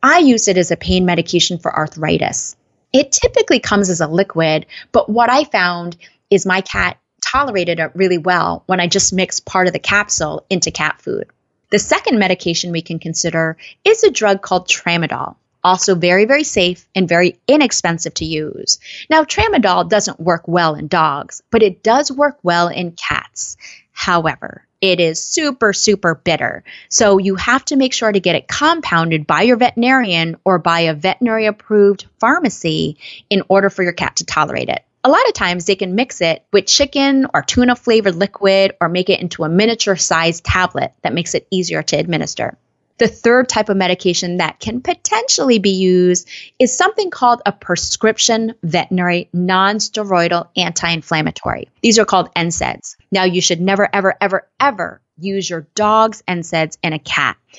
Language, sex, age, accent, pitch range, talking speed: English, female, 30-49, American, 175-220 Hz, 175 wpm